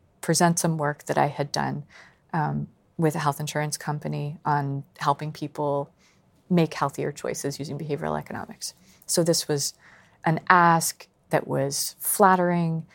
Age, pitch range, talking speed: 30-49, 145-185 Hz, 140 wpm